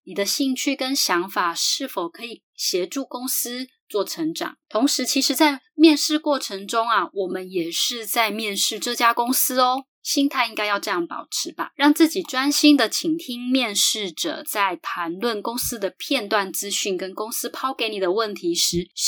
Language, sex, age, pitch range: Chinese, female, 20-39, 200-295 Hz